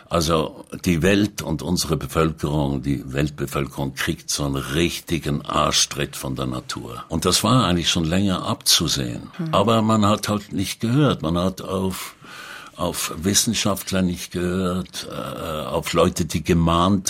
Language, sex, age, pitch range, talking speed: German, male, 60-79, 70-95 Hz, 145 wpm